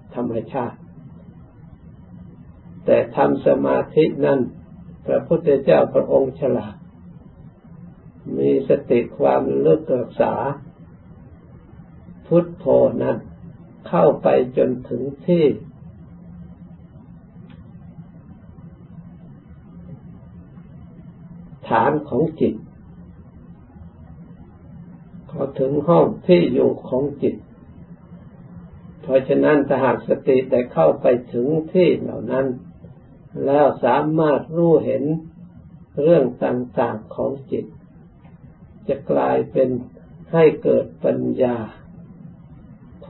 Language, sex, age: Thai, male, 60-79